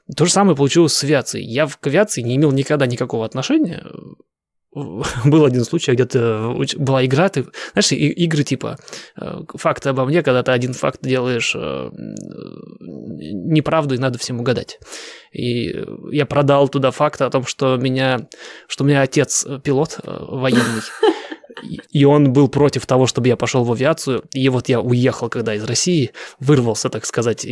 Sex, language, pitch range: male, Russian, 125-155 Hz